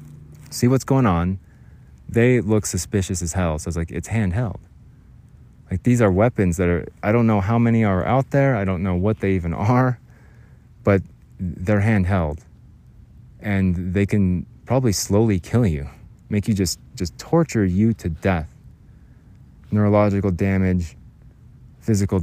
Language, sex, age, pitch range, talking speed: English, male, 20-39, 90-120 Hz, 150 wpm